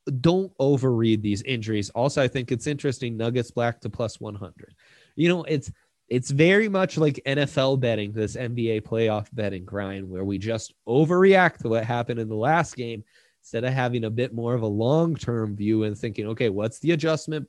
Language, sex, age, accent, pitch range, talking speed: English, male, 20-39, American, 110-140 Hz, 190 wpm